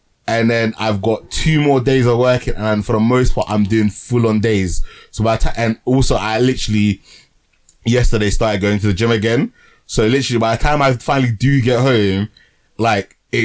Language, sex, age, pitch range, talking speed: English, male, 20-39, 95-115 Hz, 200 wpm